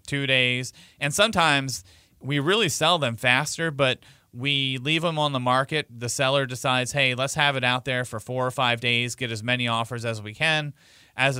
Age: 30-49